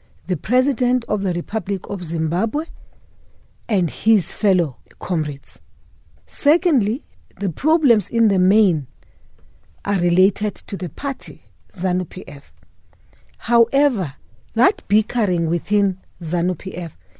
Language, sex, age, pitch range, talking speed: English, female, 50-69, 180-230 Hz, 100 wpm